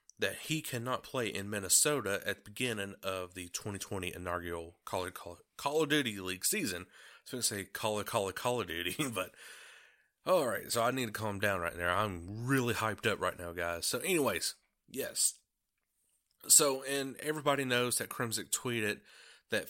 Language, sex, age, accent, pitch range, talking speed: English, male, 30-49, American, 105-135 Hz, 185 wpm